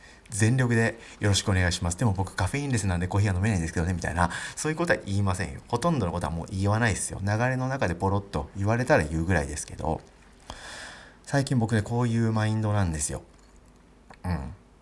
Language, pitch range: Japanese, 80-110 Hz